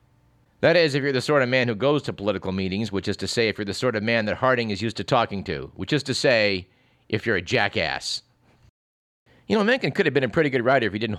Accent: American